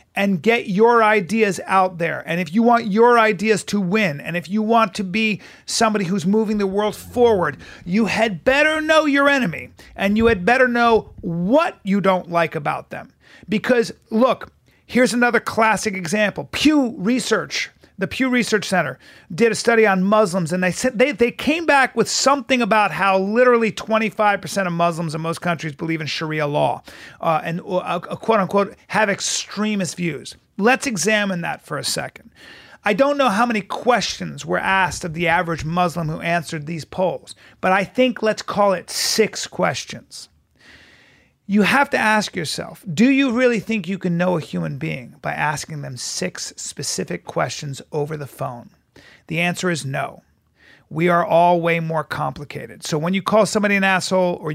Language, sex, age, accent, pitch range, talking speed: English, male, 40-59, American, 170-225 Hz, 180 wpm